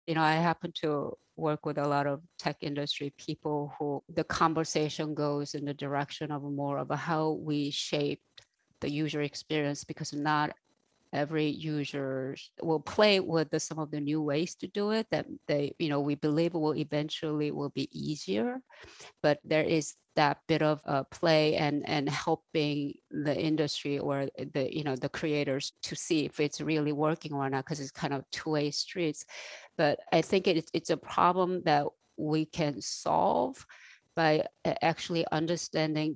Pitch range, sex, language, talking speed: 145-165 Hz, female, English, 175 wpm